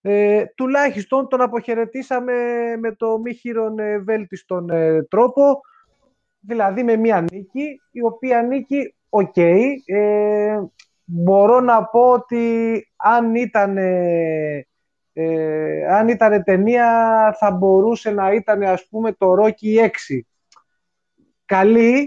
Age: 20-39